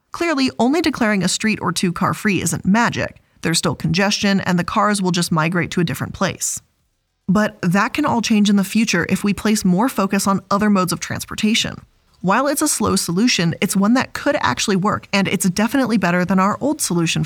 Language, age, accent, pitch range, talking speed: English, 20-39, American, 180-235 Hz, 210 wpm